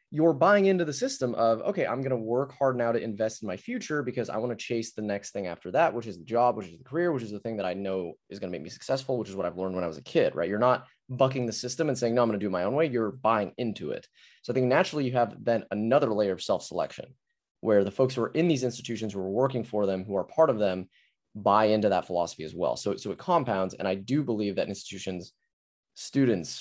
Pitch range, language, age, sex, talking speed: 95-125 Hz, English, 20-39, male, 280 wpm